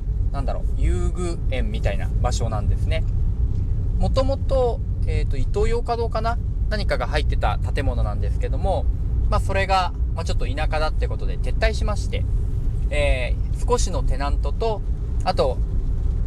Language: Japanese